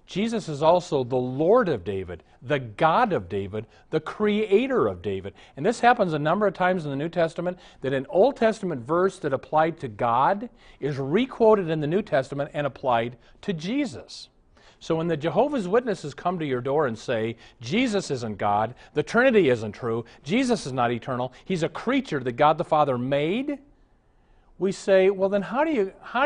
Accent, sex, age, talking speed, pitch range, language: American, male, 40-59, 190 wpm, 145-210 Hz, English